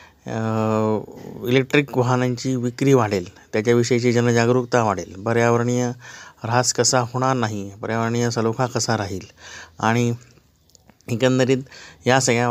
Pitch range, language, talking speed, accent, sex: 110-135 Hz, Marathi, 100 wpm, native, male